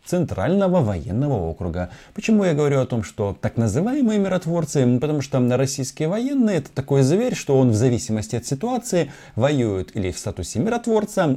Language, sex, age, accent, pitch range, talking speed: Russian, male, 30-49, native, 100-140 Hz, 160 wpm